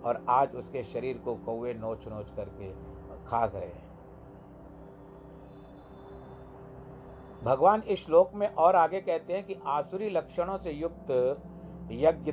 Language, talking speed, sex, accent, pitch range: Hindi, 125 wpm, male, native, 120-150 Hz